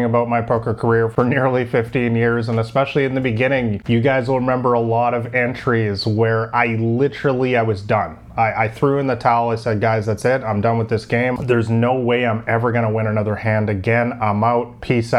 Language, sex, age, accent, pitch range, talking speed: English, male, 30-49, American, 110-125 Hz, 225 wpm